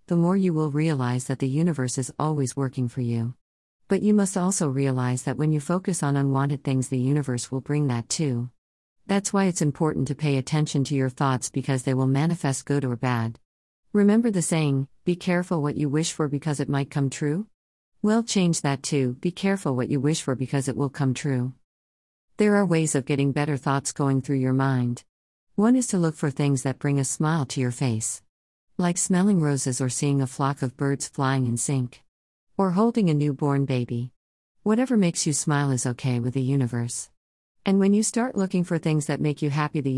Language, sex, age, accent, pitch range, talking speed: English, female, 50-69, American, 130-160 Hz, 210 wpm